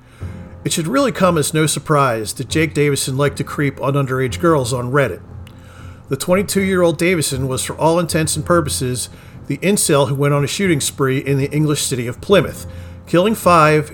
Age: 50-69